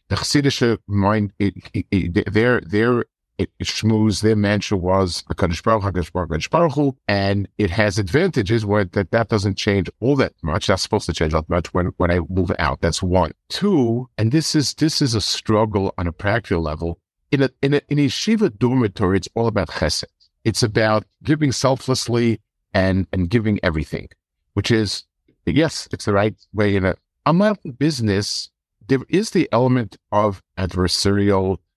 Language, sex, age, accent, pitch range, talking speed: English, male, 50-69, American, 95-120 Hz, 165 wpm